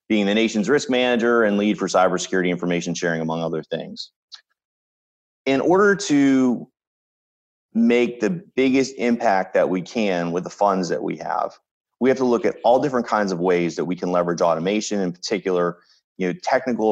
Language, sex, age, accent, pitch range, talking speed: English, male, 30-49, American, 90-115 Hz, 175 wpm